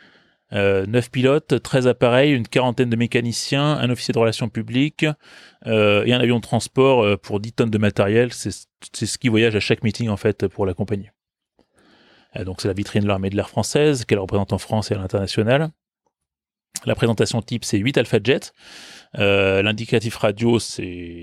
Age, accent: 30-49, French